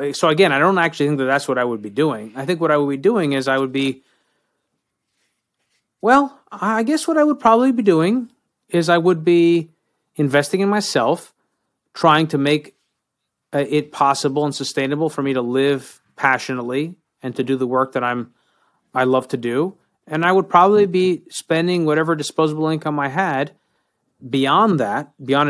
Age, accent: 30-49, American